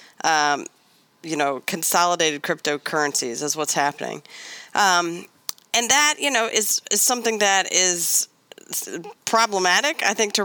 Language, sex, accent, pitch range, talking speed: English, female, American, 165-210 Hz, 125 wpm